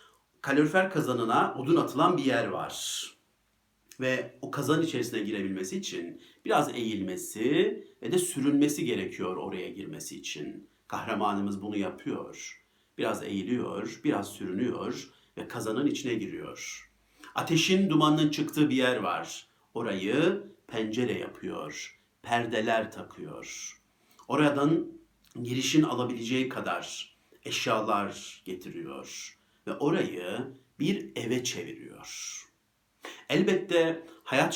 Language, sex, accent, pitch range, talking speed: Turkish, male, native, 110-150 Hz, 100 wpm